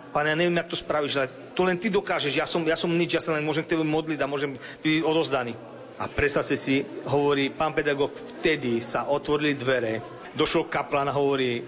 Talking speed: 210 wpm